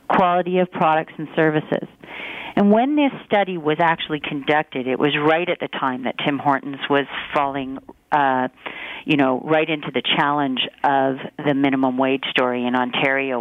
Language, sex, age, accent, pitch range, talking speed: English, female, 40-59, American, 140-165 Hz, 165 wpm